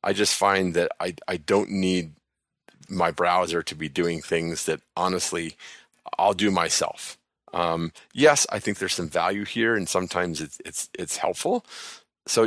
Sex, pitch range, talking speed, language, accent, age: male, 85-100 Hz, 165 wpm, English, American, 40-59